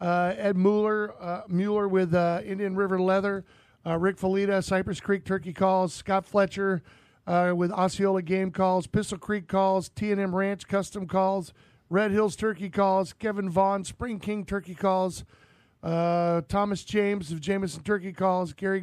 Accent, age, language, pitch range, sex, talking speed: American, 50-69, English, 185-210 Hz, male, 160 wpm